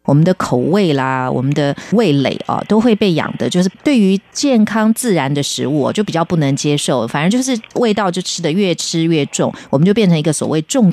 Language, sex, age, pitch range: Chinese, female, 30-49, 140-185 Hz